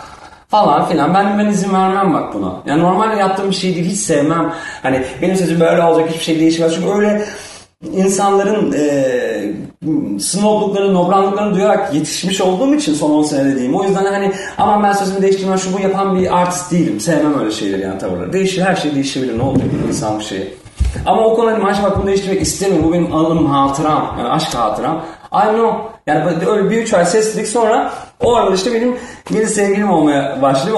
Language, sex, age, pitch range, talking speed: Turkish, male, 40-59, 145-200 Hz, 195 wpm